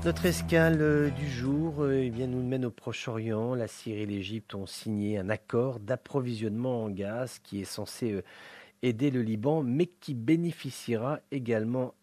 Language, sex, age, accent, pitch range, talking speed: English, male, 40-59, French, 105-130 Hz, 155 wpm